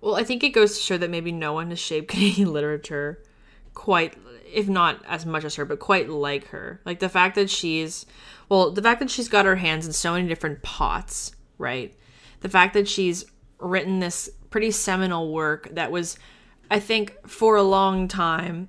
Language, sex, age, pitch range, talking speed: English, female, 20-39, 140-185 Hz, 200 wpm